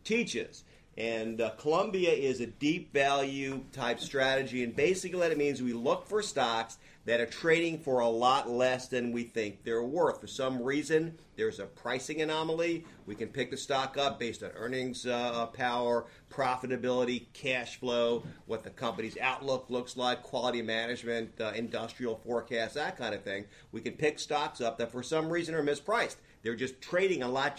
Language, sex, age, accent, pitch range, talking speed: English, male, 50-69, American, 115-140 Hz, 185 wpm